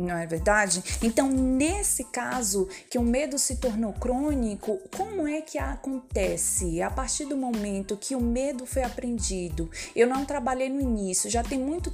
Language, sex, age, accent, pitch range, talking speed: Portuguese, female, 20-39, Brazilian, 215-270 Hz, 165 wpm